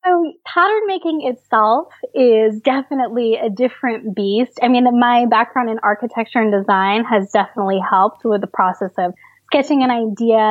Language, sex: English, female